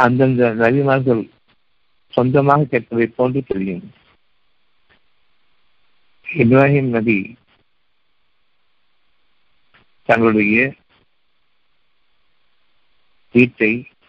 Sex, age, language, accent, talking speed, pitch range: male, 50-69, Tamil, native, 45 wpm, 105-130 Hz